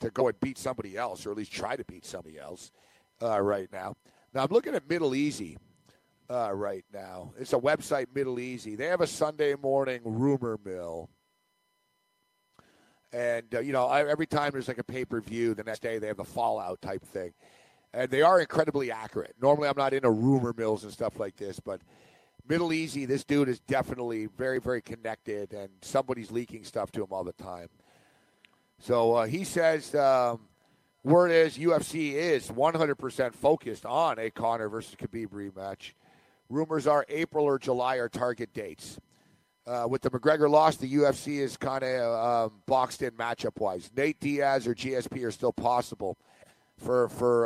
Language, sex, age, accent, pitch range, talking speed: English, male, 50-69, American, 115-145 Hz, 175 wpm